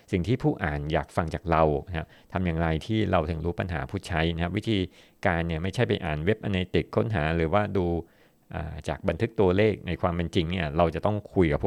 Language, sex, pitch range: Thai, male, 80-95 Hz